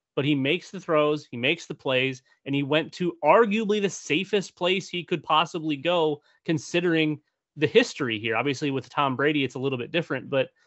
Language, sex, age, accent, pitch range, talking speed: English, male, 30-49, American, 130-160 Hz, 195 wpm